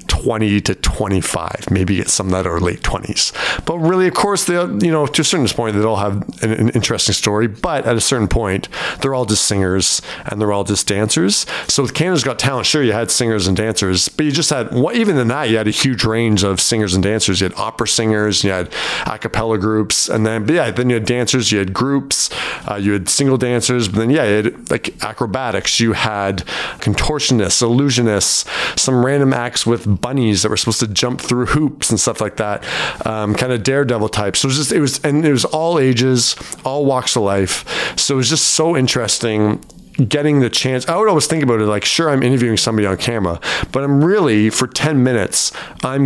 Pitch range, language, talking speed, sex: 100-130 Hz, English, 220 wpm, male